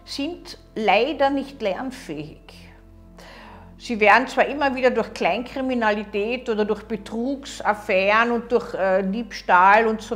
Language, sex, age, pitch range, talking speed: German, female, 50-69, 210-265 Hz, 110 wpm